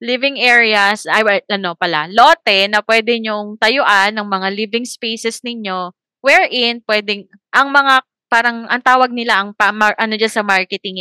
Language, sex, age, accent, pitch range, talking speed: Filipino, female, 20-39, native, 185-230 Hz, 165 wpm